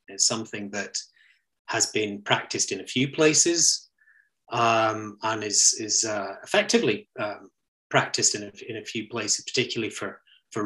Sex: male